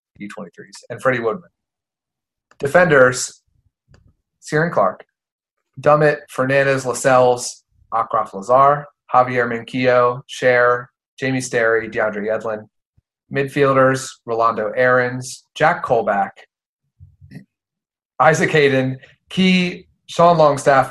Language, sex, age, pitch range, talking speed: English, male, 30-49, 110-135 Hz, 85 wpm